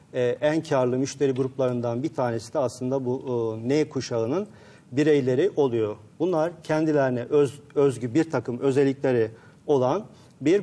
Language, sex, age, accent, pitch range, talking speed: Turkish, male, 40-59, native, 125-160 Hz, 135 wpm